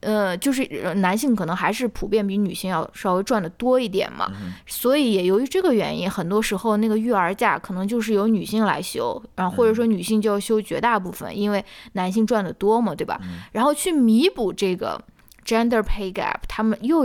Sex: female